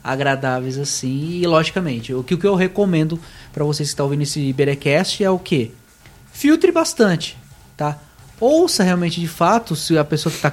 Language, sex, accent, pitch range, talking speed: Portuguese, male, Brazilian, 125-175 Hz, 170 wpm